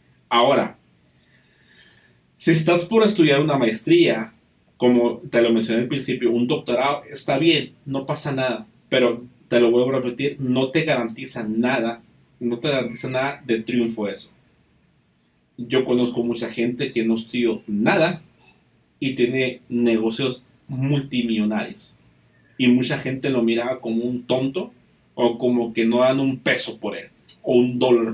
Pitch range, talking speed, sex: 115-145 Hz, 145 wpm, male